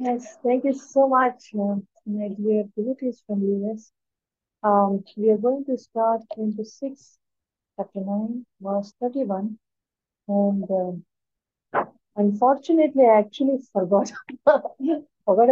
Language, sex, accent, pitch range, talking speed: English, female, Indian, 195-235 Hz, 110 wpm